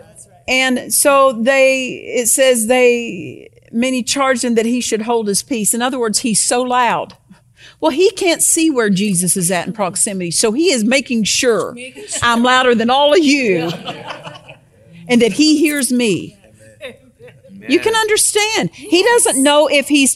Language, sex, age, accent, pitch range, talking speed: English, female, 40-59, American, 210-280 Hz, 165 wpm